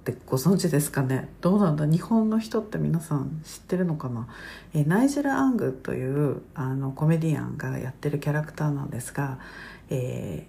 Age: 50-69